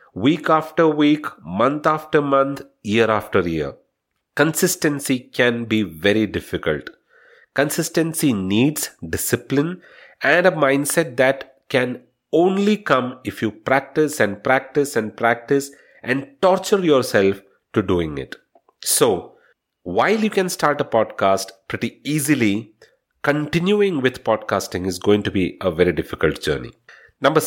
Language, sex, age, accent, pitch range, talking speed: English, male, 40-59, Indian, 110-155 Hz, 125 wpm